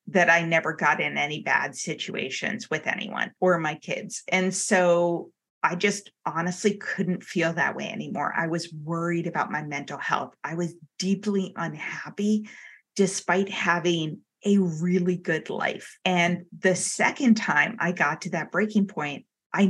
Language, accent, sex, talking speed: English, American, female, 155 wpm